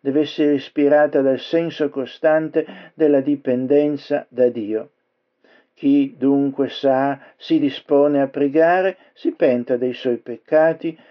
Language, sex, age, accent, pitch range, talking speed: Italian, male, 60-79, native, 135-170 Hz, 120 wpm